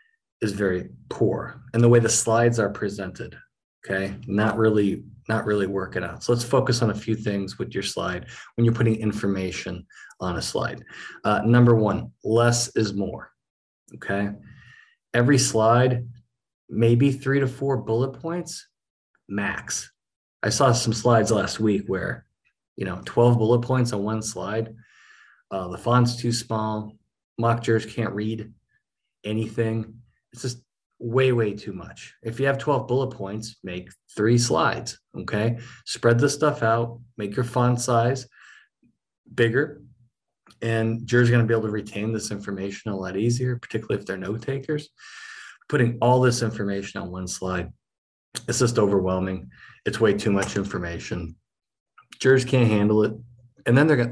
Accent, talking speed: American, 155 wpm